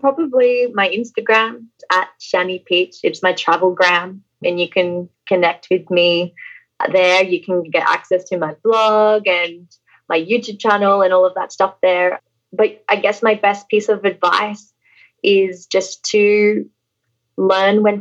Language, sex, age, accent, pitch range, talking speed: English, female, 20-39, Australian, 180-215 Hz, 155 wpm